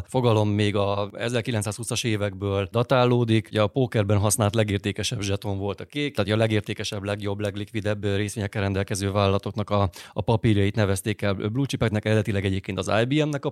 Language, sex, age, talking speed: Hungarian, male, 30-49, 155 wpm